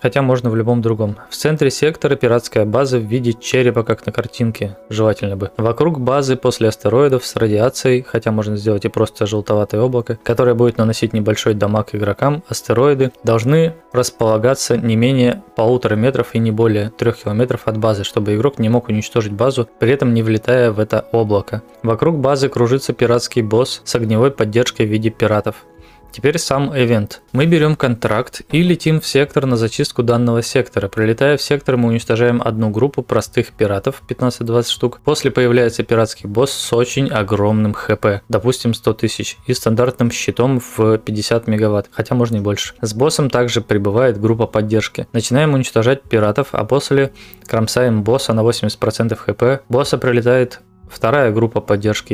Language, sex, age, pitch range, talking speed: Russian, male, 20-39, 110-130 Hz, 165 wpm